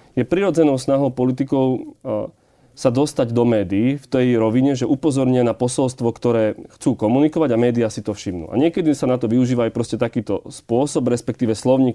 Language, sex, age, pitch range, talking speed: Slovak, male, 30-49, 115-135 Hz, 175 wpm